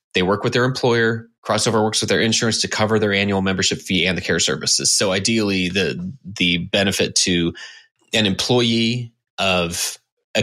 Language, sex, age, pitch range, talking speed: English, male, 20-39, 90-105 Hz, 175 wpm